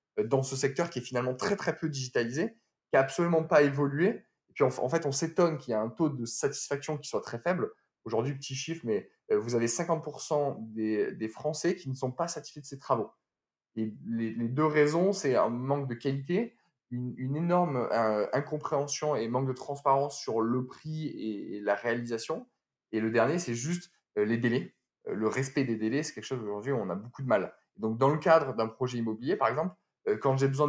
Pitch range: 120-150 Hz